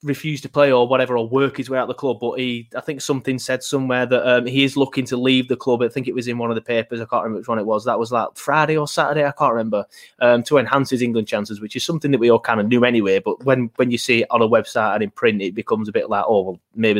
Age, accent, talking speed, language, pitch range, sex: 20-39, British, 320 wpm, English, 125-155 Hz, male